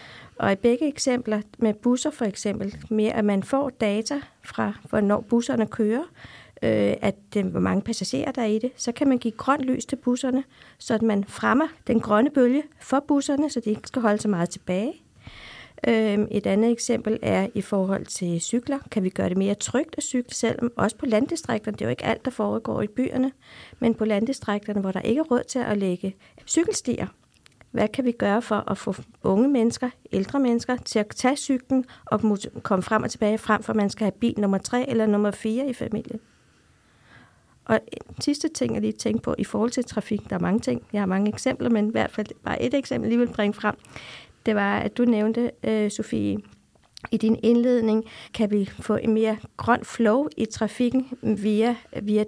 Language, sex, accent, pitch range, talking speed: Danish, female, native, 210-250 Hz, 205 wpm